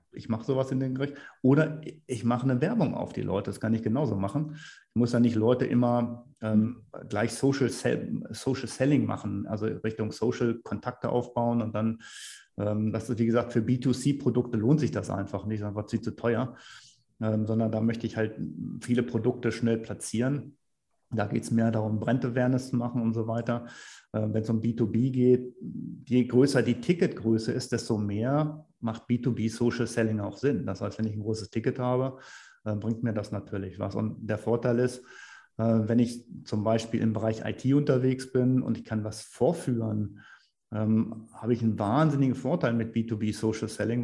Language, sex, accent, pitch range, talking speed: German, male, German, 110-125 Hz, 180 wpm